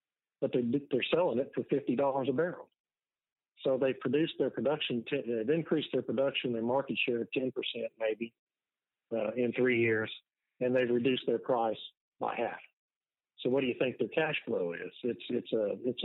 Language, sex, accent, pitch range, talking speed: English, male, American, 115-140 Hz, 180 wpm